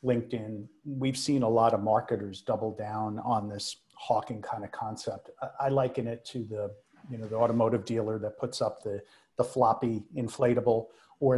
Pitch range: 110-135 Hz